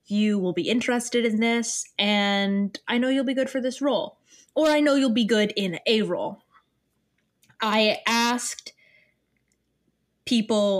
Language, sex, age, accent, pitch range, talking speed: English, female, 10-29, American, 195-260 Hz, 150 wpm